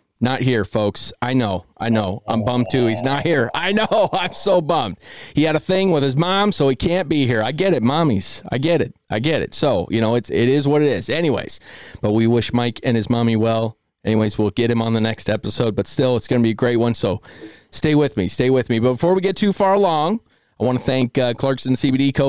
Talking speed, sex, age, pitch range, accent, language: 265 wpm, male, 30-49, 115-145 Hz, American, English